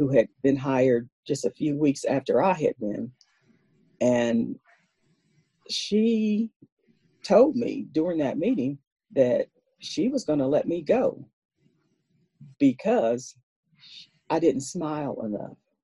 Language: English